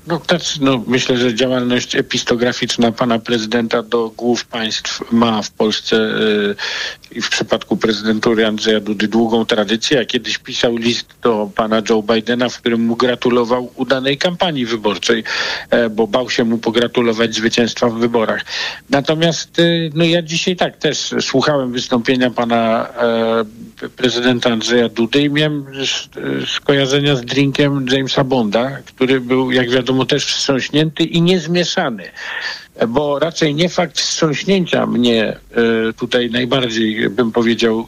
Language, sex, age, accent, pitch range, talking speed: Polish, male, 50-69, native, 120-160 Hz, 135 wpm